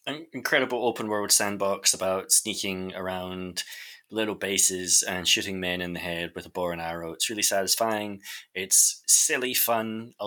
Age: 20-39